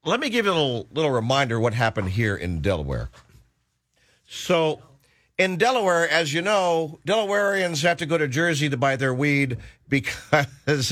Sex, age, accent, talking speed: male, 50-69, American, 165 wpm